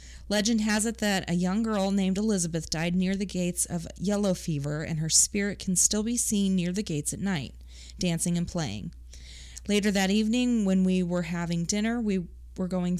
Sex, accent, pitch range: female, American, 160-205 Hz